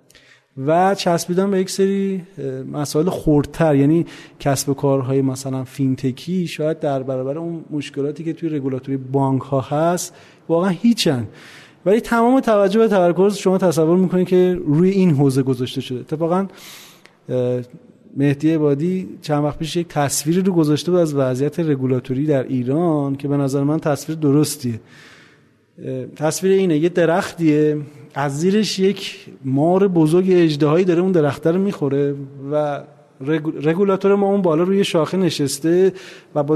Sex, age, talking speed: male, 30-49, 140 wpm